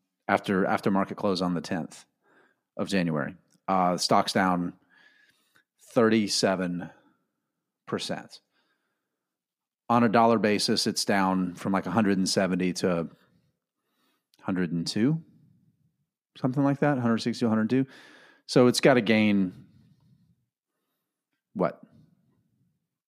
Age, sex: 40-59, male